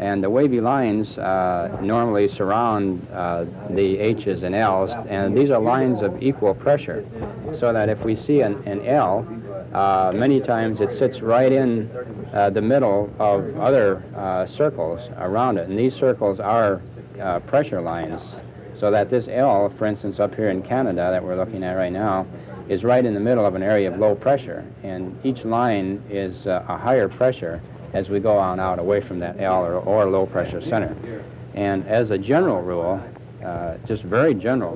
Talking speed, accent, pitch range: 185 wpm, American, 95-115 Hz